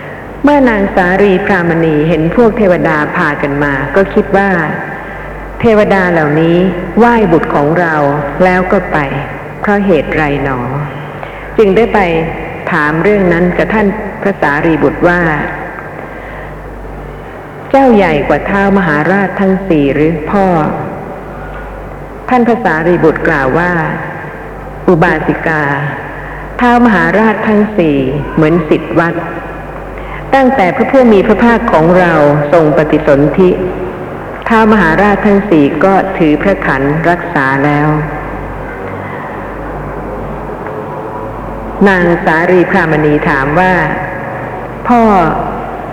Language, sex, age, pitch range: Thai, female, 60-79, 150-195 Hz